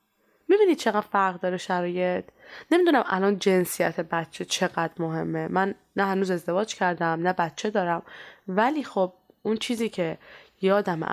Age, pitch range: 20-39, 175-245 Hz